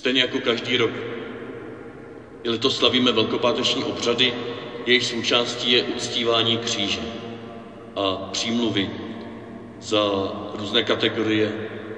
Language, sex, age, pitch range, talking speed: Czech, male, 40-59, 110-125 Hz, 95 wpm